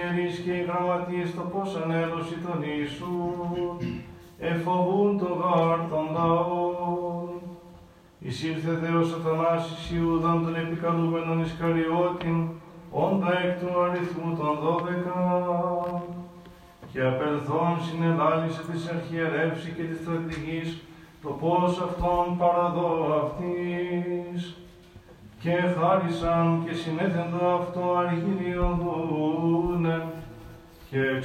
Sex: male